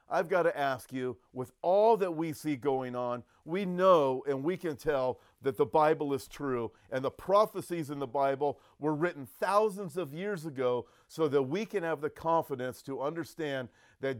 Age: 40-59